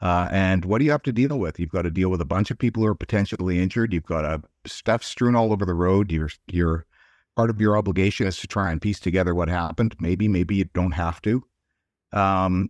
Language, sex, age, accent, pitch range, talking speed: English, male, 50-69, American, 90-120 Hz, 250 wpm